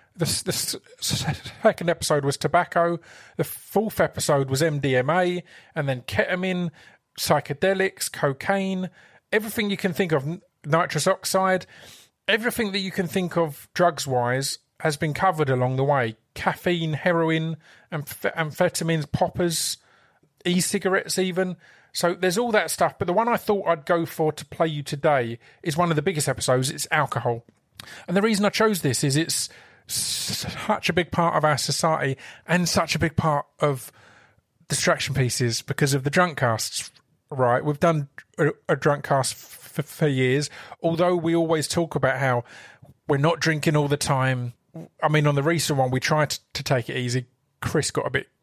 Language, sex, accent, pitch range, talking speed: English, male, British, 135-175 Hz, 165 wpm